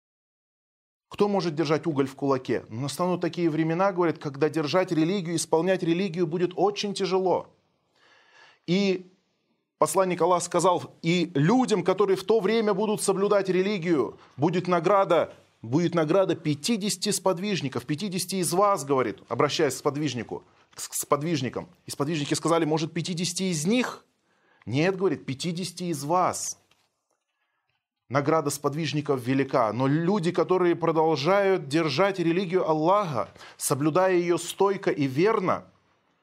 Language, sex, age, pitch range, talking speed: Russian, male, 20-39, 150-195 Hz, 125 wpm